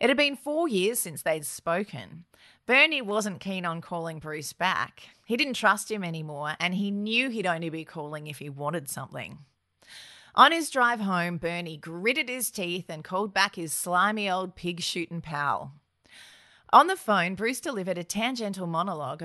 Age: 30-49